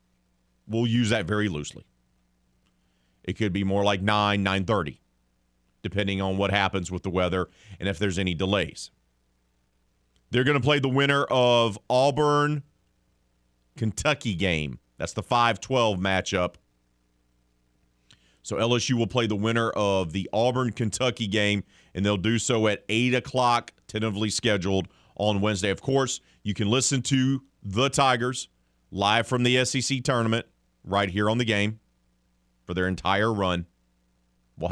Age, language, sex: 40-59, English, male